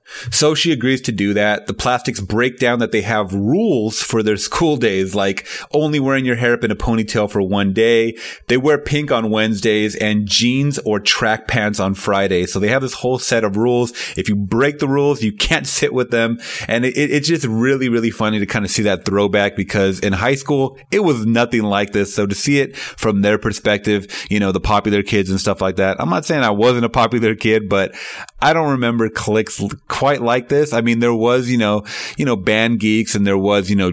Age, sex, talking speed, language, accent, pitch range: 30-49, male, 230 wpm, English, American, 100-120 Hz